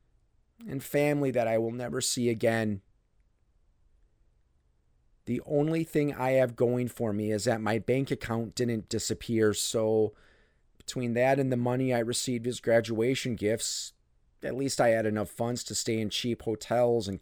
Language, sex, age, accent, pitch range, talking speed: English, male, 30-49, American, 105-125 Hz, 160 wpm